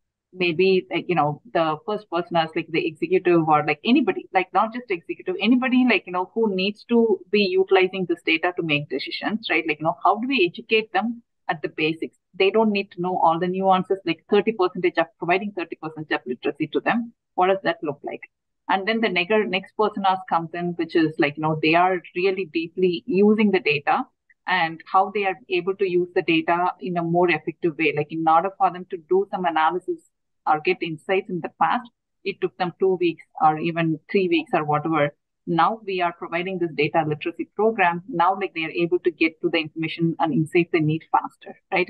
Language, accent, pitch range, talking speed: English, Indian, 165-220 Hz, 215 wpm